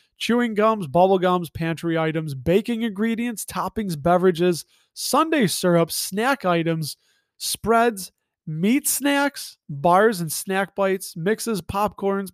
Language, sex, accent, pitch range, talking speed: English, male, American, 175-230 Hz, 110 wpm